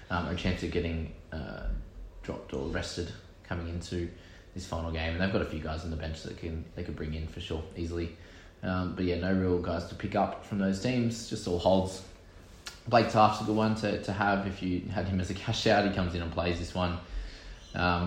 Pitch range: 85-100 Hz